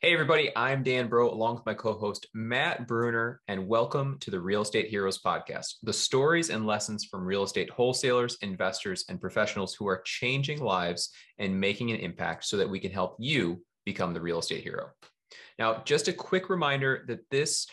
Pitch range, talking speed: 95-120 Hz, 195 wpm